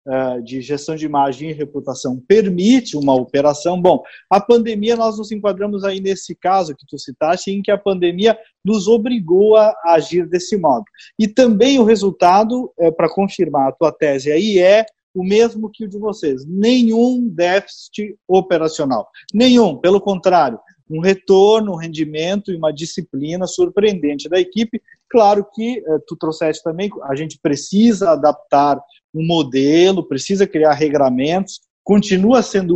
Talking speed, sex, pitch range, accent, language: 145 wpm, male, 150-210 Hz, Brazilian, Portuguese